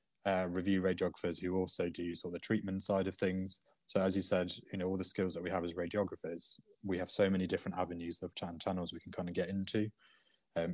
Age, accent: 20-39, British